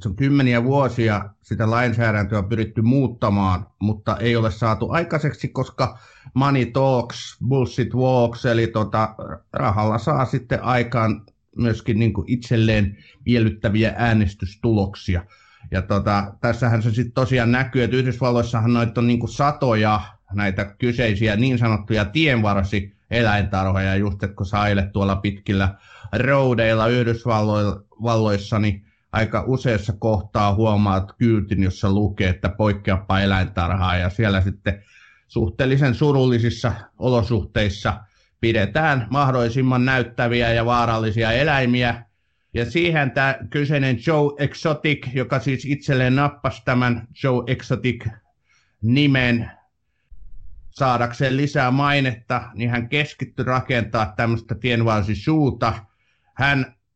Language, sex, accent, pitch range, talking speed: Finnish, male, native, 105-130 Hz, 105 wpm